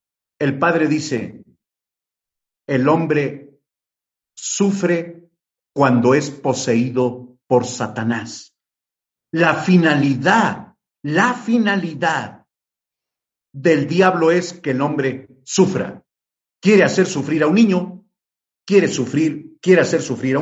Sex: male